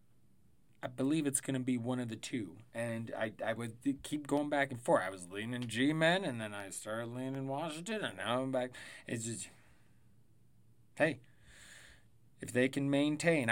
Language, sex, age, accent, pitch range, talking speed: English, male, 20-39, American, 110-140 Hz, 180 wpm